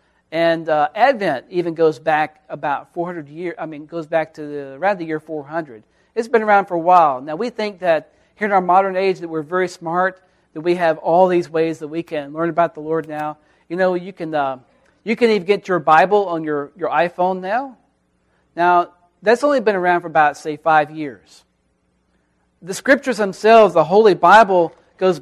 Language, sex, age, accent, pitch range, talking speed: English, male, 40-59, American, 160-200 Hz, 200 wpm